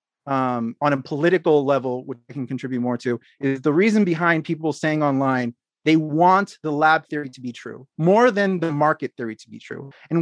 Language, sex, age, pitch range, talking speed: English, male, 30-49, 140-185 Hz, 205 wpm